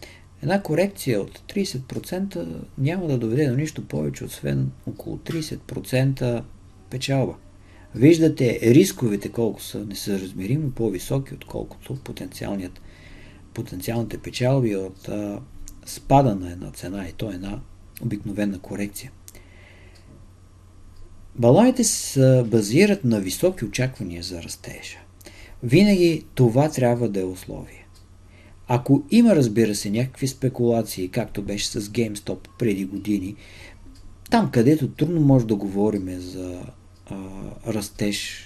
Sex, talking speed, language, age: male, 105 wpm, Bulgarian, 50-69